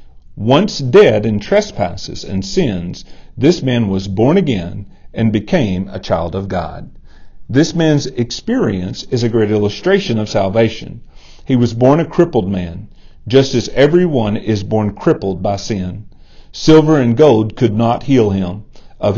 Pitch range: 100-135 Hz